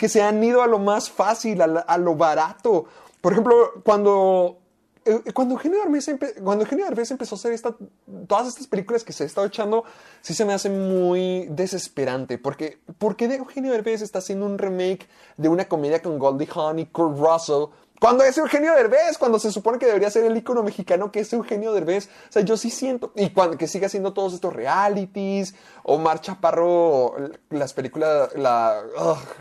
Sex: male